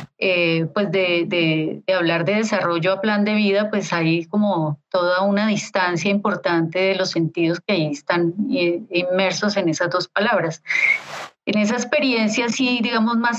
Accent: Colombian